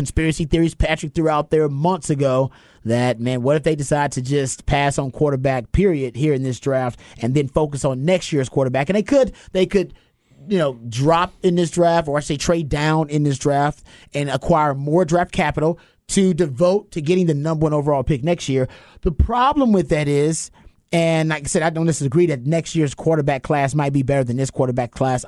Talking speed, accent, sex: 215 wpm, American, male